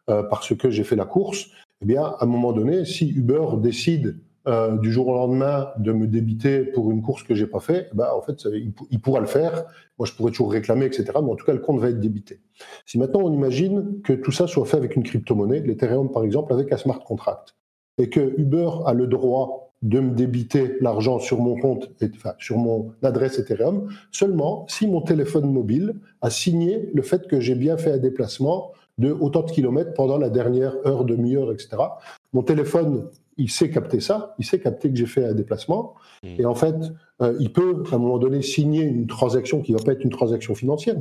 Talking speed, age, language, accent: 225 wpm, 50-69, French, French